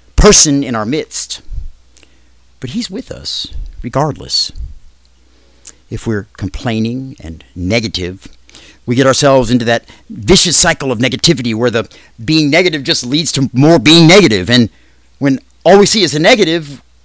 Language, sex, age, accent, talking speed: English, male, 50-69, American, 145 wpm